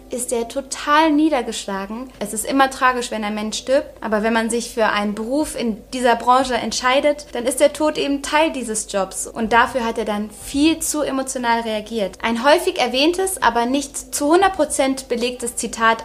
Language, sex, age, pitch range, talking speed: German, female, 20-39, 220-275 Hz, 185 wpm